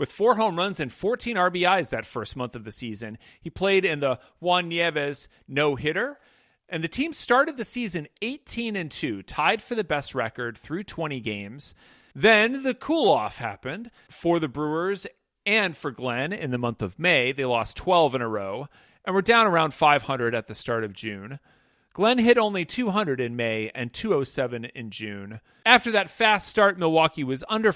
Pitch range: 125-185 Hz